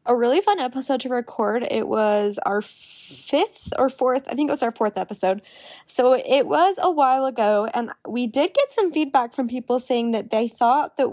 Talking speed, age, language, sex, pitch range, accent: 205 wpm, 10-29, English, female, 220-270 Hz, American